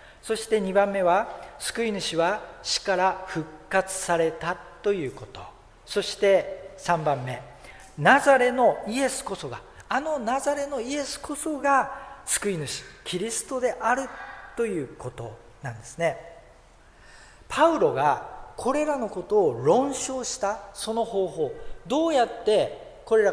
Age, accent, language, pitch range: 40-59, native, Japanese, 165-265 Hz